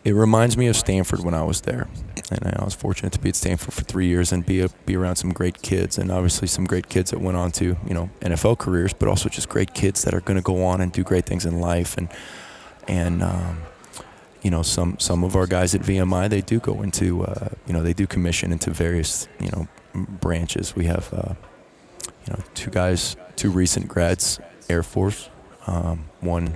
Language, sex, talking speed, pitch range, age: English, male, 225 wpm, 85-100 Hz, 20-39